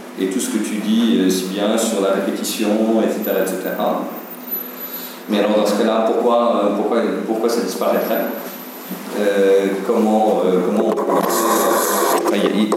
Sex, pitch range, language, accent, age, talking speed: male, 100-130 Hz, French, French, 50-69, 130 wpm